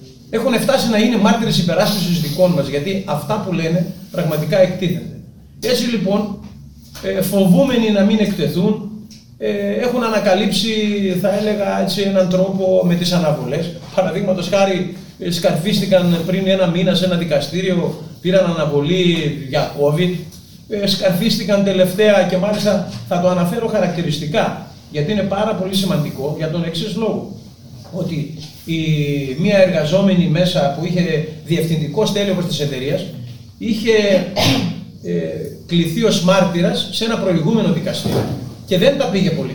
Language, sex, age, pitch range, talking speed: Greek, male, 30-49, 170-205 Hz, 135 wpm